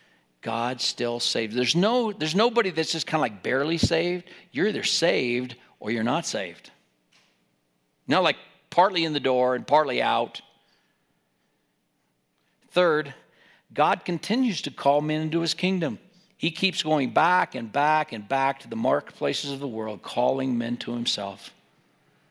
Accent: American